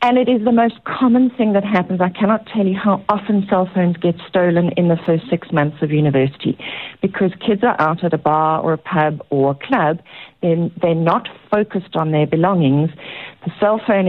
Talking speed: 210 wpm